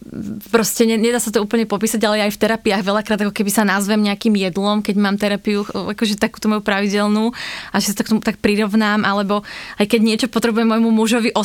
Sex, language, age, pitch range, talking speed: female, Slovak, 20-39, 195-220 Hz, 205 wpm